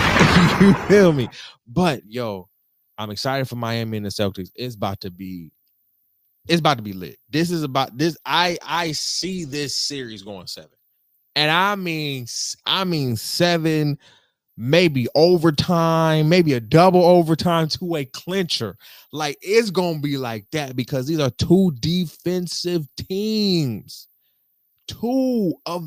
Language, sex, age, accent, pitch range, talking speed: English, male, 20-39, American, 115-170 Hz, 140 wpm